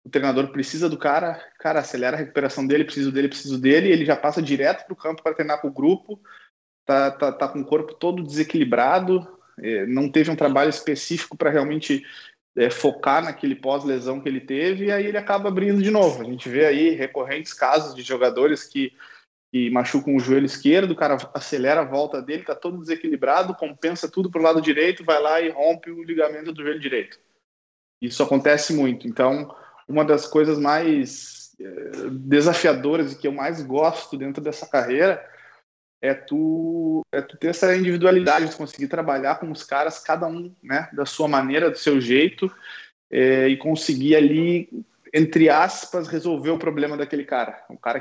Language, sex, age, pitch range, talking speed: Portuguese, male, 20-39, 140-170 Hz, 180 wpm